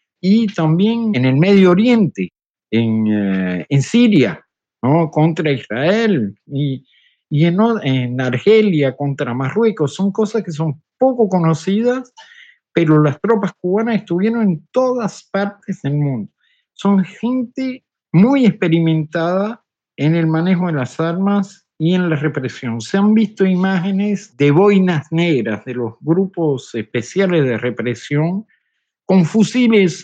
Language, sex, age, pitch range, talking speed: Spanish, male, 50-69, 145-200 Hz, 125 wpm